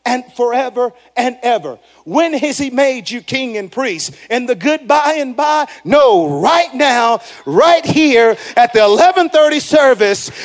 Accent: American